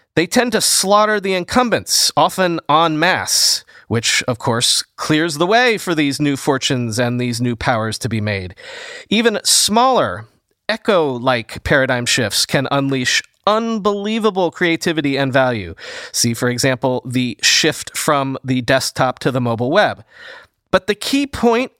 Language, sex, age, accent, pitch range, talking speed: English, male, 30-49, American, 135-205 Hz, 145 wpm